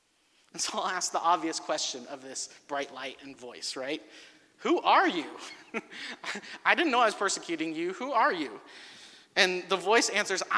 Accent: American